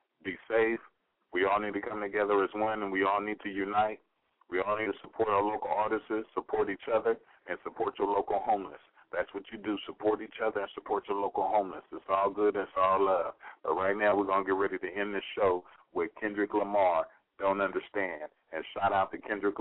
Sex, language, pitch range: male, English, 100-110 Hz